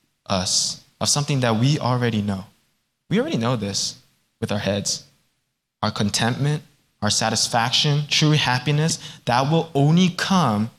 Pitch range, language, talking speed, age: 115-150 Hz, English, 135 wpm, 20-39